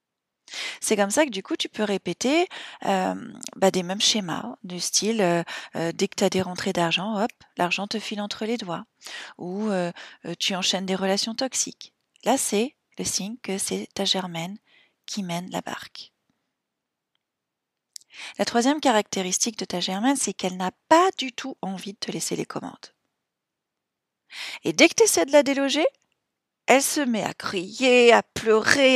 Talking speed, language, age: 170 wpm, French, 40-59